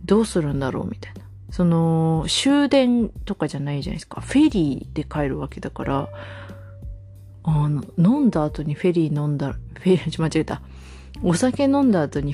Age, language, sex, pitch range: 30-49, Japanese, female, 145-185 Hz